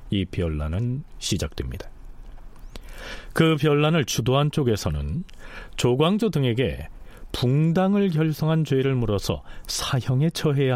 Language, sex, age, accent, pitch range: Korean, male, 40-59, native, 95-145 Hz